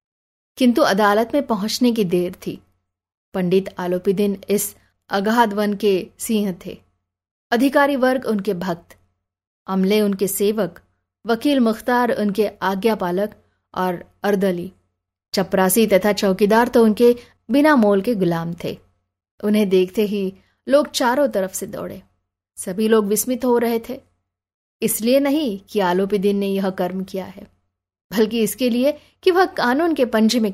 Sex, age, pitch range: female, 20-39, 185-235 Hz